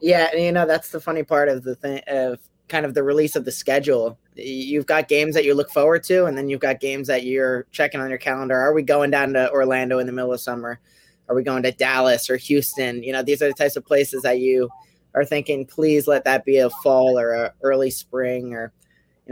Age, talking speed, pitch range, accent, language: 20-39, 250 wpm, 125-140 Hz, American, English